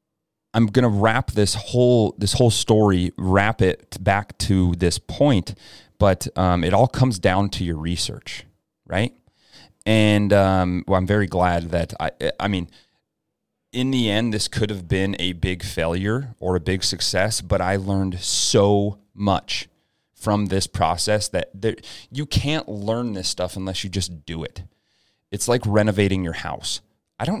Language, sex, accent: English, male, American